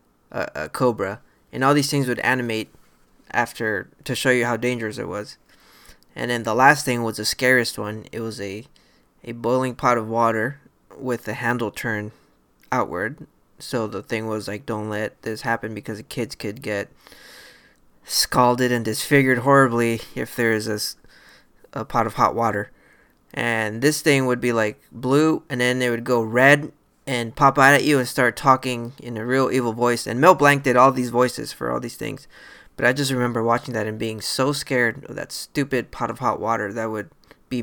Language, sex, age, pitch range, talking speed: English, male, 20-39, 115-140 Hz, 195 wpm